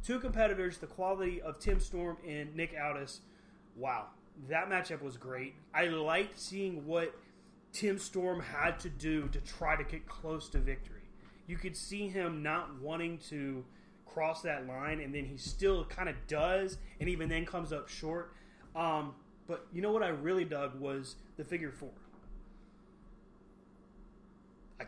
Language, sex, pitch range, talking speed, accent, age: English, male, 150-195 Hz, 160 wpm, American, 30-49